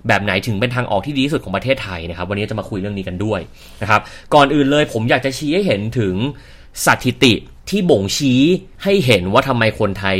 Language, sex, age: Thai, male, 30-49